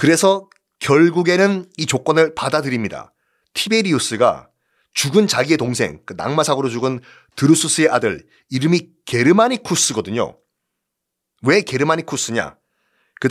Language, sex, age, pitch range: Korean, male, 30-49, 120-165 Hz